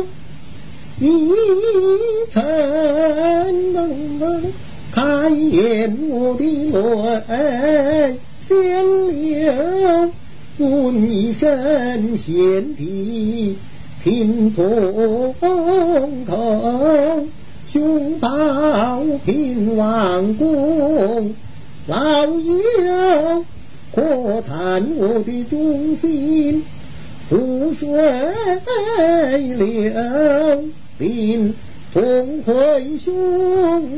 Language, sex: Chinese, male